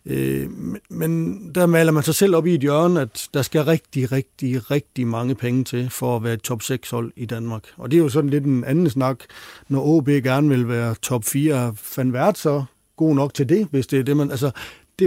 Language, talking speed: Danish, 215 wpm